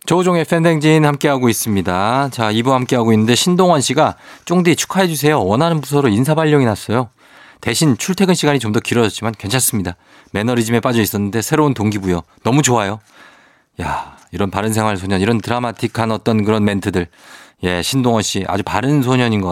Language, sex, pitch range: Korean, male, 100-135 Hz